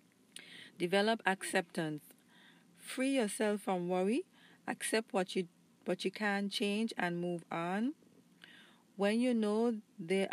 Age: 40-59